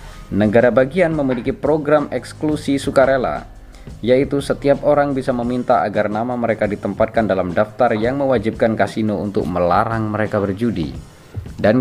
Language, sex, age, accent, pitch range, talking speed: Indonesian, male, 20-39, native, 90-125 Hz, 125 wpm